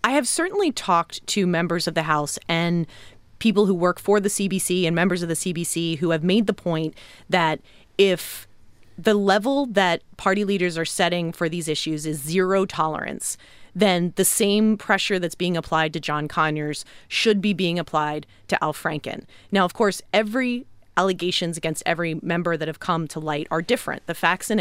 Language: English